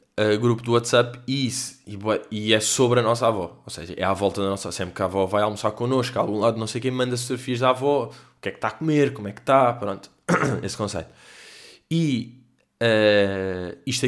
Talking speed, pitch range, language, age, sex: 215 wpm, 100-125 Hz, Portuguese, 20-39, male